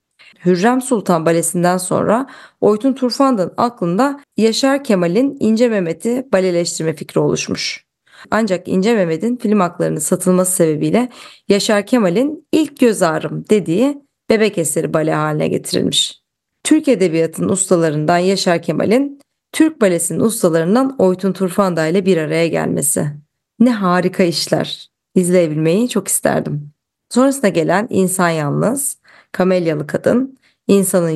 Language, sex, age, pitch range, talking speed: Turkish, female, 30-49, 175-235 Hz, 115 wpm